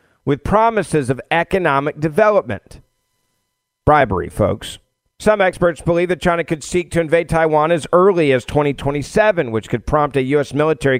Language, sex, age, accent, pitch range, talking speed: English, male, 50-69, American, 125-165 Hz, 145 wpm